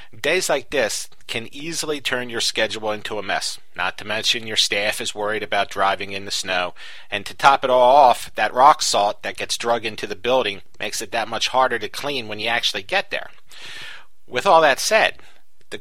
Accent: American